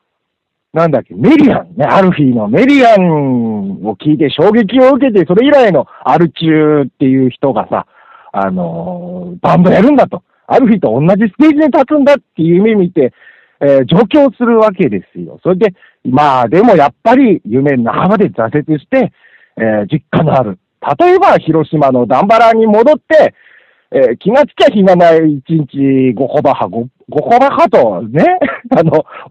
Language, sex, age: Japanese, male, 50-69